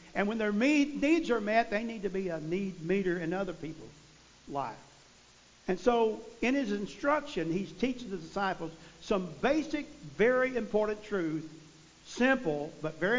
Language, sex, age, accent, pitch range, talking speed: English, male, 50-69, American, 165-225 Hz, 155 wpm